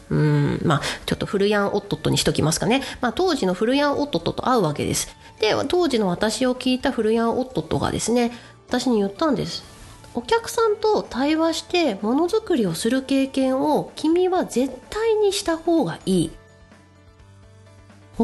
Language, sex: Japanese, female